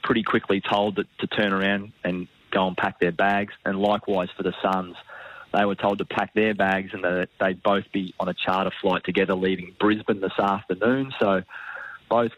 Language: English